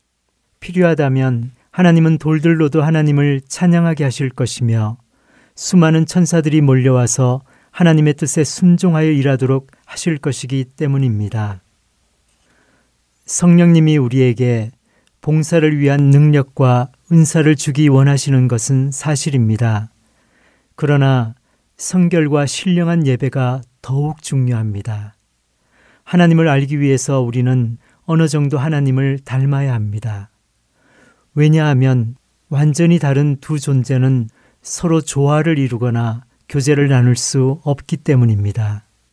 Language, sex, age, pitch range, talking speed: English, male, 40-59, 120-155 Hz, 85 wpm